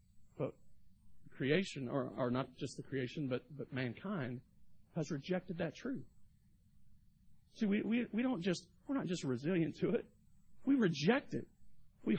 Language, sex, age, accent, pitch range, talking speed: English, male, 50-69, American, 125-175 Hz, 150 wpm